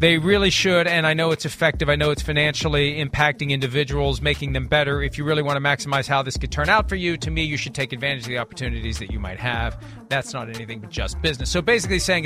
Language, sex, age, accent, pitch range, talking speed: English, male, 40-59, American, 135-185 Hz, 255 wpm